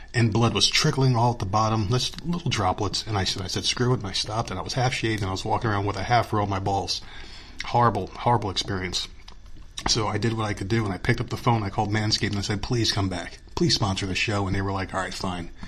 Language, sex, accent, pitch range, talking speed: English, male, American, 100-115 Hz, 280 wpm